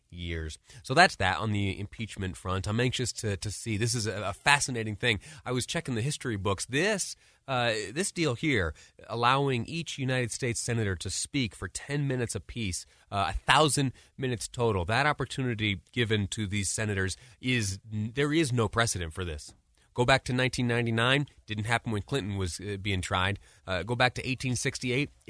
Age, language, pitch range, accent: 30-49, English, 95-125 Hz, American